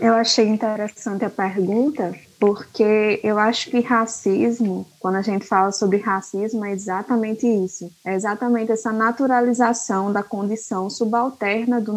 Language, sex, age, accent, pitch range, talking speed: Portuguese, female, 20-39, Brazilian, 205-260 Hz, 135 wpm